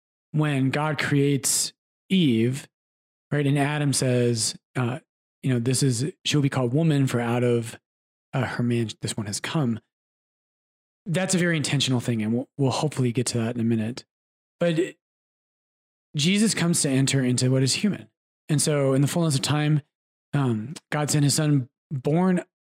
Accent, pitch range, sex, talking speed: American, 120-155 Hz, male, 175 wpm